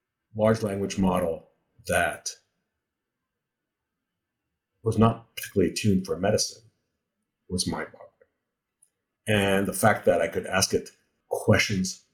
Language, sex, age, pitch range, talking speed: English, male, 50-69, 100-120 Hz, 110 wpm